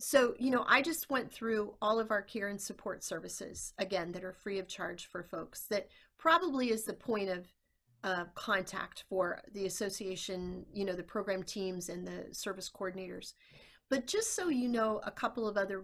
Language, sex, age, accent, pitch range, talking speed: English, female, 40-59, American, 190-225 Hz, 195 wpm